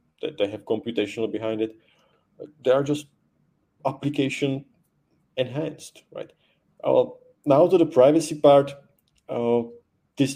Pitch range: 110-150 Hz